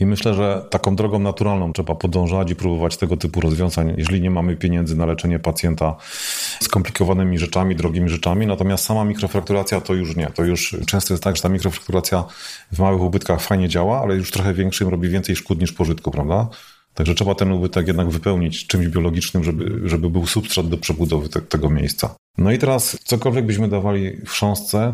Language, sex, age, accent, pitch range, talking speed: Polish, male, 40-59, native, 85-100 Hz, 190 wpm